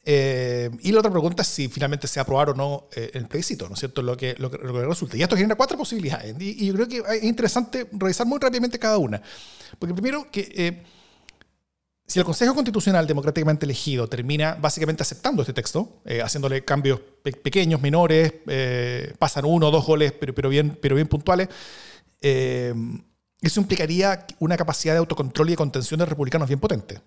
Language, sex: Spanish, male